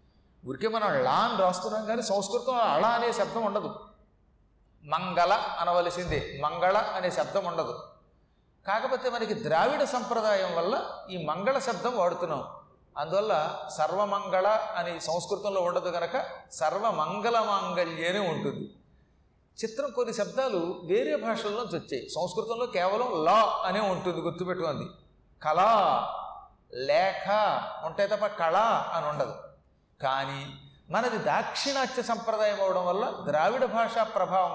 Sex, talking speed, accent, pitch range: male, 105 wpm, native, 170-235 Hz